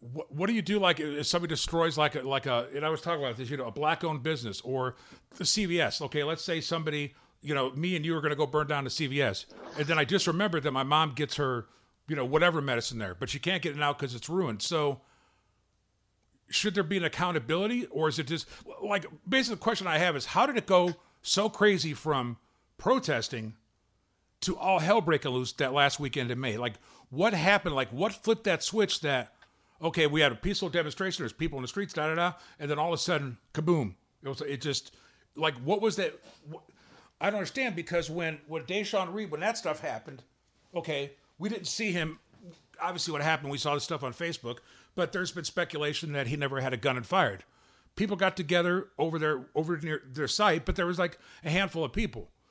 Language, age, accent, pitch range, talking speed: English, 40-59, American, 140-180 Hz, 225 wpm